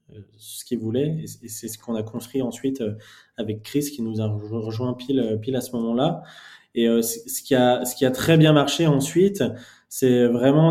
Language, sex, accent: French, male, French